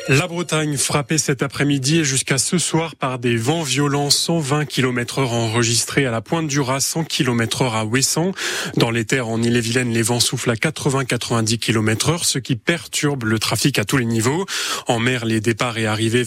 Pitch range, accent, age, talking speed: 115-150 Hz, French, 20-39, 205 wpm